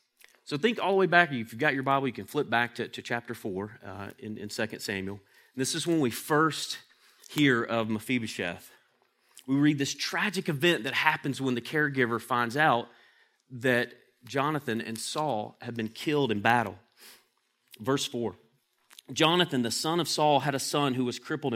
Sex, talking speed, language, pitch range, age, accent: male, 180 wpm, English, 110-145 Hz, 30-49, American